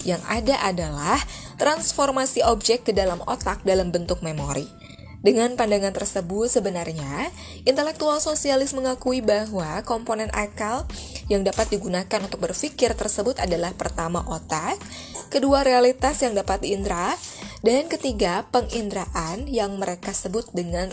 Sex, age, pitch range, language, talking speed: female, 20-39, 195-260 Hz, Indonesian, 120 wpm